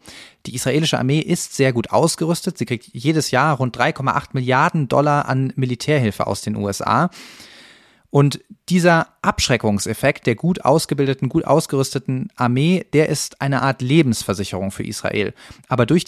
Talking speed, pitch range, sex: 140 wpm, 120-155 Hz, male